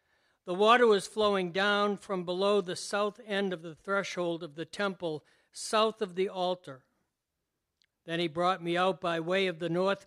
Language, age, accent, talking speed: English, 60-79, American, 180 wpm